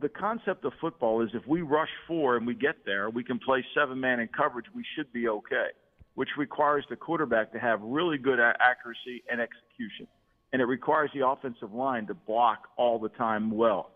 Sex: male